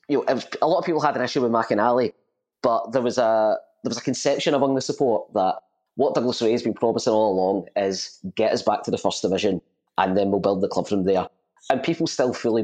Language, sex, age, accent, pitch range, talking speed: English, male, 20-39, British, 100-120 Hz, 240 wpm